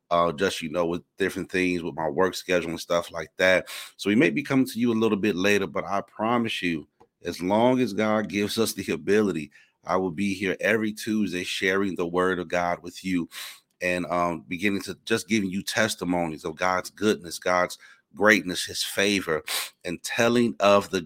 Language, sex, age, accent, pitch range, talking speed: English, male, 30-49, American, 90-105 Hz, 200 wpm